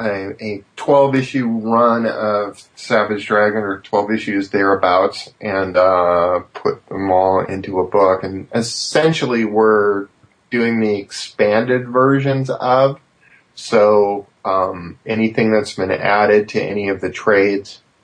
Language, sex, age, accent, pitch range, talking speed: English, male, 30-49, American, 95-115 Hz, 125 wpm